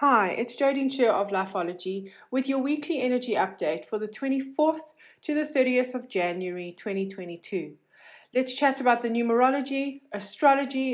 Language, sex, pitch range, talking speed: English, female, 200-265 Hz, 145 wpm